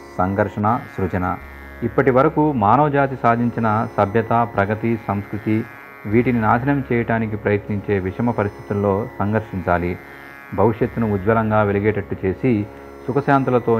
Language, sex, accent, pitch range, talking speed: Telugu, male, native, 95-115 Hz, 95 wpm